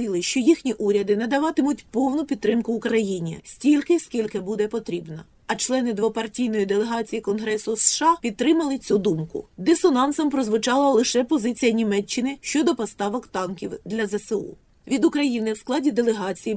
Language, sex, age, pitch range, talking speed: Ukrainian, female, 30-49, 210-270 Hz, 125 wpm